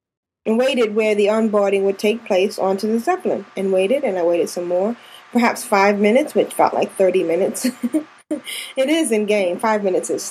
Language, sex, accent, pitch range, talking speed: English, female, American, 210-275 Hz, 190 wpm